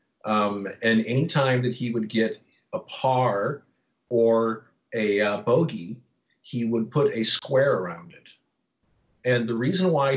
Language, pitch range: English, 110-125 Hz